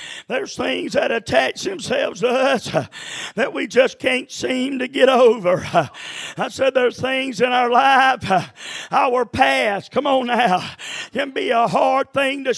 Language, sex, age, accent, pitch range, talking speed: English, male, 50-69, American, 270-335 Hz, 170 wpm